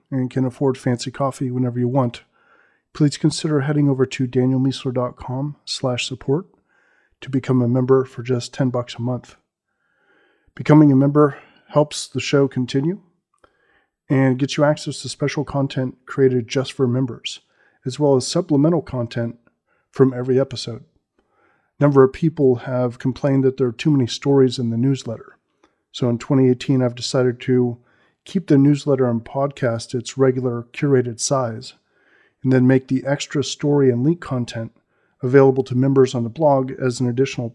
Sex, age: male, 40-59